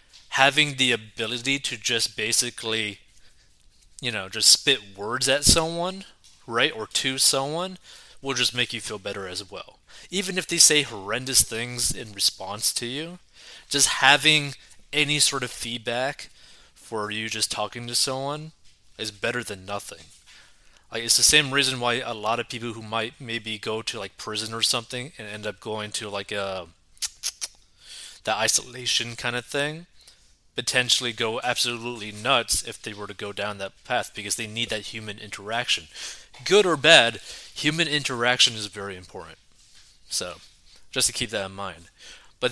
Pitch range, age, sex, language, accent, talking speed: 105-135 Hz, 20-39, male, English, American, 165 wpm